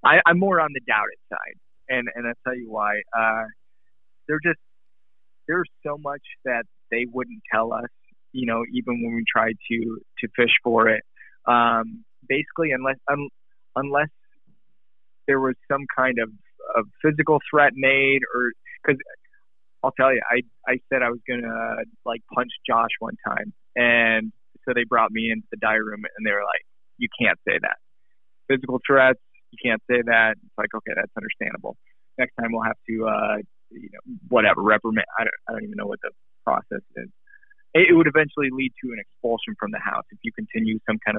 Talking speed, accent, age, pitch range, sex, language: 185 wpm, American, 20-39, 115-135 Hz, male, English